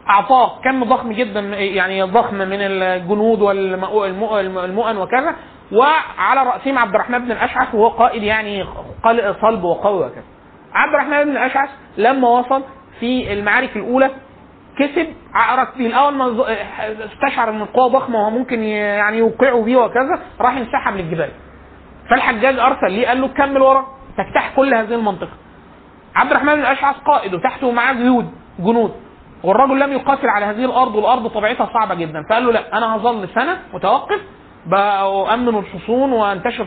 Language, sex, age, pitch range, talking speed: Arabic, male, 30-49, 215-260 Hz, 145 wpm